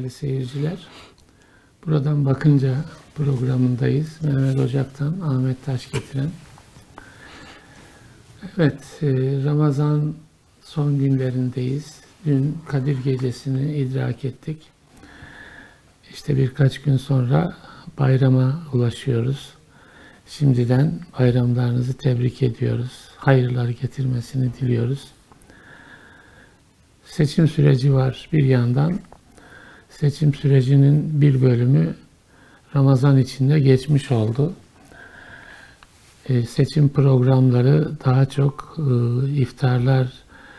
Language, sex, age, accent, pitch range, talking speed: Turkish, male, 60-79, native, 125-145 Hz, 70 wpm